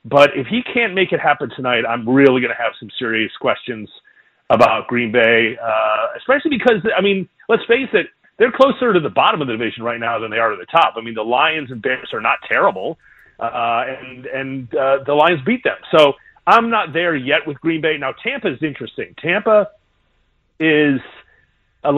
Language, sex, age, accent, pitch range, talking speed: English, male, 30-49, American, 125-180 Hz, 205 wpm